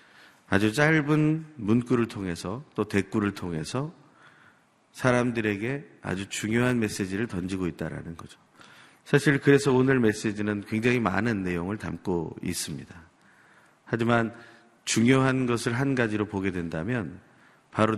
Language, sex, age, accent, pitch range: Korean, male, 40-59, native, 100-125 Hz